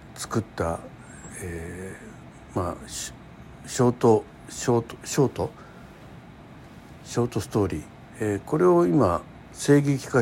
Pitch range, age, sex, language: 100-150 Hz, 60-79, male, Japanese